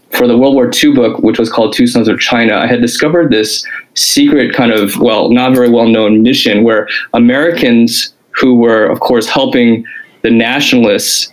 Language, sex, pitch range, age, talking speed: English, male, 115-125 Hz, 20-39, 180 wpm